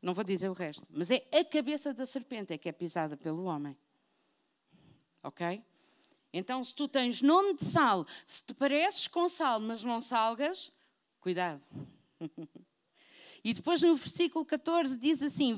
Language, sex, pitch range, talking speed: Portuguese, female, 185-265 Hz, 155 wpm